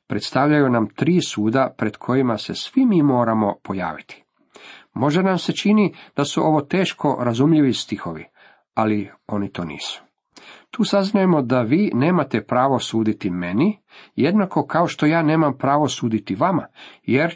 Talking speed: 145 wpm